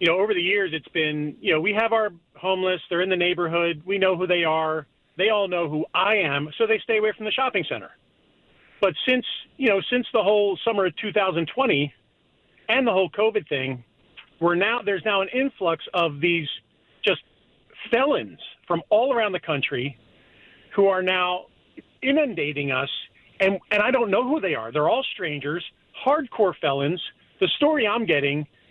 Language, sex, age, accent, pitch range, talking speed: English, male, 40-59, American, 170-230 Hz, 185 wpm